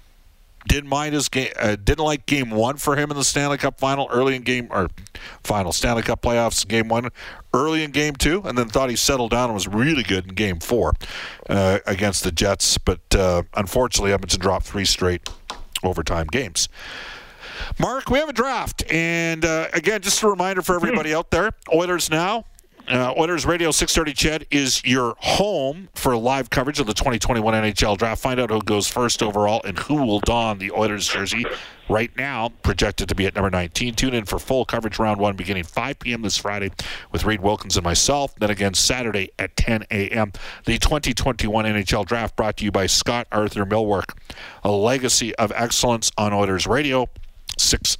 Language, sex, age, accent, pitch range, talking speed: English, male, 50-69, American, 100-135 Hz, 200 wpm